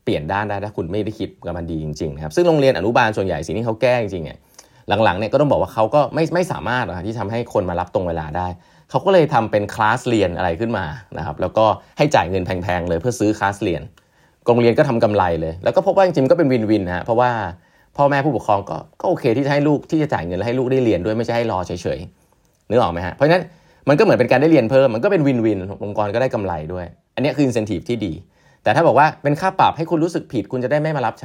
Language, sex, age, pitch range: Thai, male, 20-39, 90-130 Hz